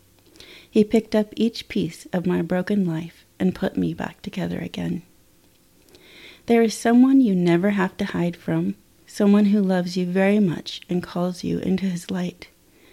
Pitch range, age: 170-205 Hz, 30-49